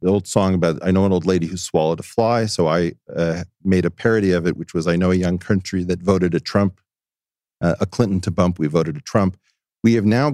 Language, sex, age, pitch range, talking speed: English, male, 40-59, 90-110 Hz, 255 wpm